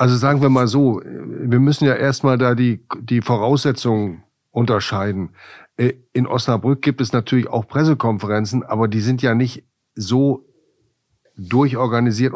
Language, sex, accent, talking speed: German, male, German, 135 wpm